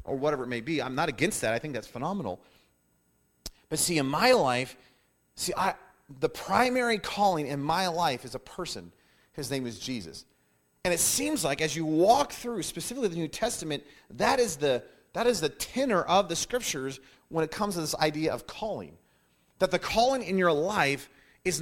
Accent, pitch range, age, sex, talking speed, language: American, 115-180 Hz, 30-49, male, 195 wpm, English